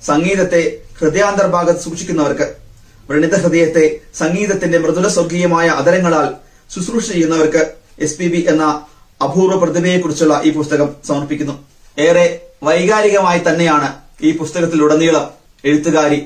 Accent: native